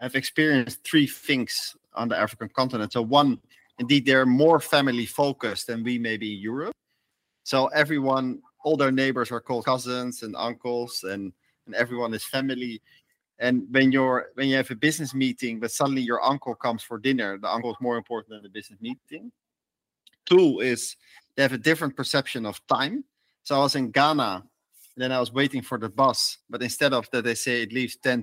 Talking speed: 195 wpm